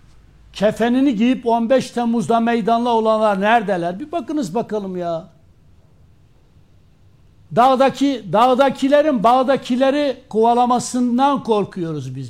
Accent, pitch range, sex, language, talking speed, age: native, 195-260 Hz, male, Turkish, 85 wpm, 60-79